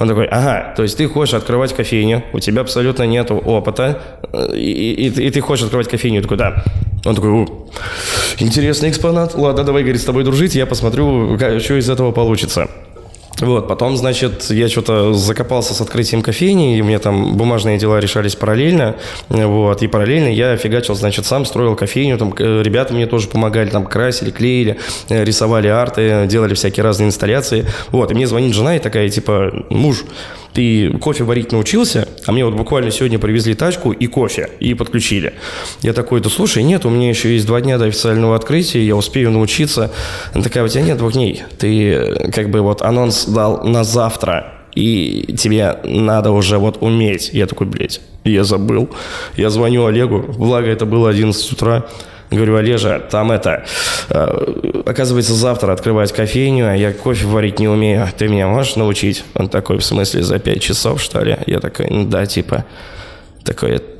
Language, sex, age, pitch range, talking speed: Russian, male, 20-39, 105-125 Hz, 175 wpm